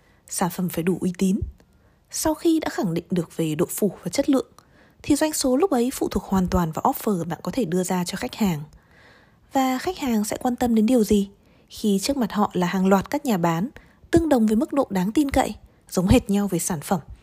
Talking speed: 245 wpm